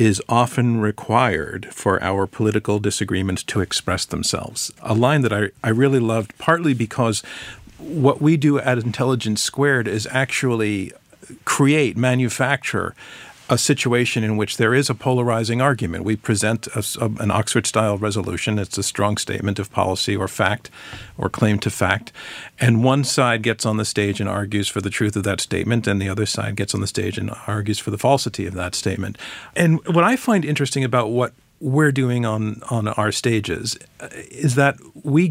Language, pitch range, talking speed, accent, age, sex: English, 105-125 Hz, 180 wpm, American, 50-69, male